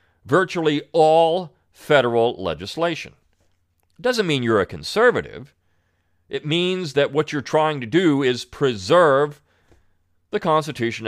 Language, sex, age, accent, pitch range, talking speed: English, male, 40-59, American, 90-150 Hz, 120 wpm